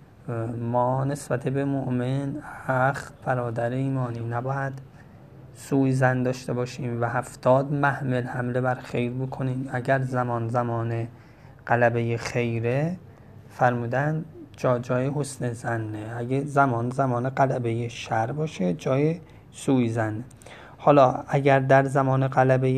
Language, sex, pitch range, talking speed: Persian, male, 120-135 Hz, 115 wpm